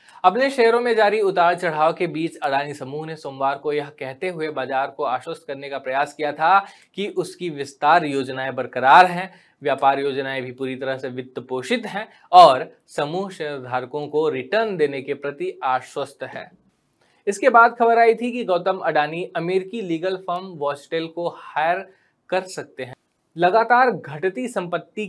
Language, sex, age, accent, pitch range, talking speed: Hindi, male, 20-39, native, 145-195 Hz, 115 wpm